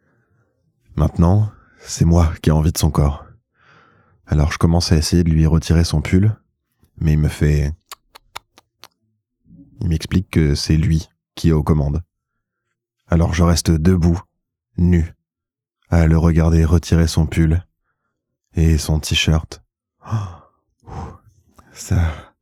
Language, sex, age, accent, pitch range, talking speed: French, male, 20-39, French, 80-100 Hz, 125 wpm